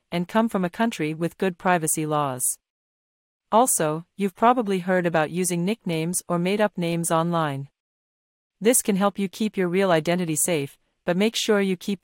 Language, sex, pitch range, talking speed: English, female, 165-200 Hz, 175 wpm